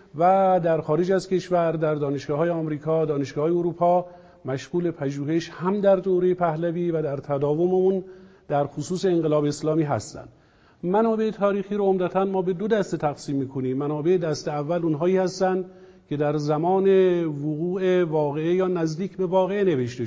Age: 50-69